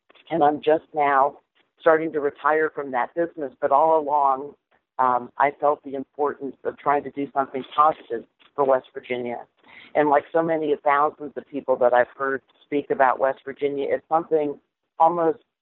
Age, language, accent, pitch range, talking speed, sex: 50-69, English, American, 130-150 Hz, 170 wpm, female